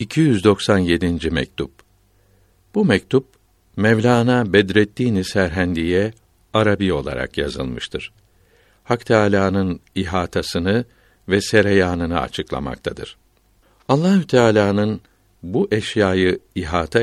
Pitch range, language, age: 95-120 Hz, Turkish, 60-79